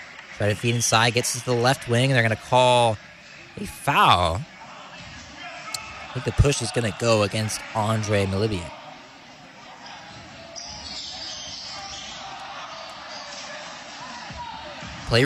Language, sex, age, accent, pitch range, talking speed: English, male, 20-39, American, 110-150 Hz, 105 wpm